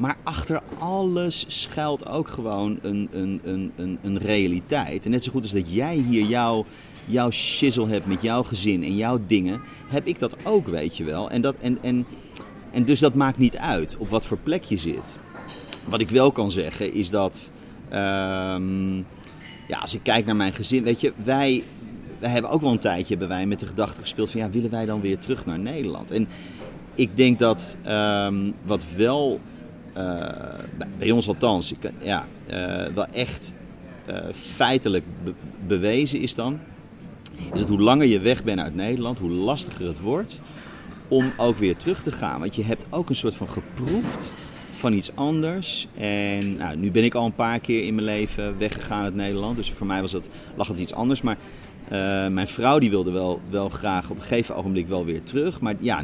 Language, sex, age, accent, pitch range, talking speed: Dutch, male, 30-49, Dutch, 95-125 Hz, 185 wpm